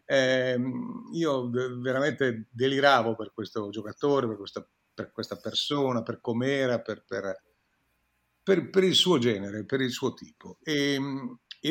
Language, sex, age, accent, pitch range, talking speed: Italian, male, 50-69, native, 120-160 Hz, 125 wpm